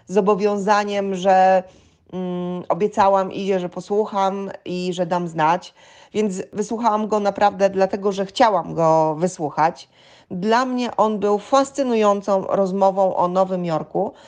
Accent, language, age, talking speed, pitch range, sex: native, Polish, 30-49, 120 wpm, 180-210 Hz, female